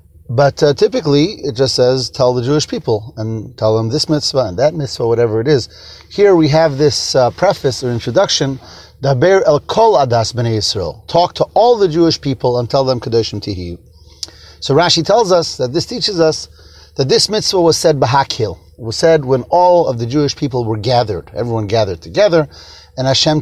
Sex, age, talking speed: male, 30-49, 185 wpm